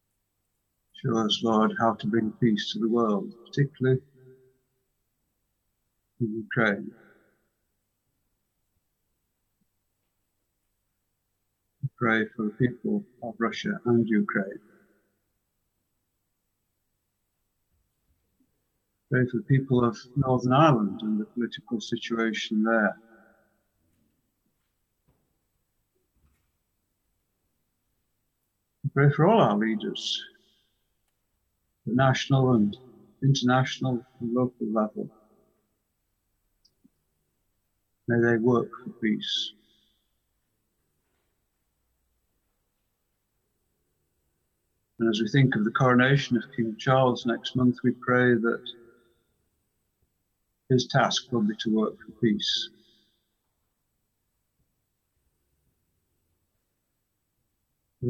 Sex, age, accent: male, 60-79, British